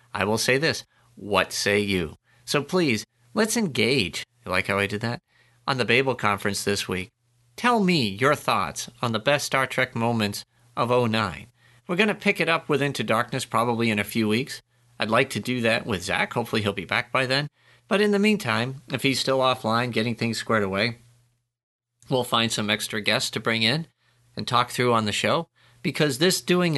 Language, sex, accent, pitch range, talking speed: English, male, American, 115-145 Hz, 205 wpm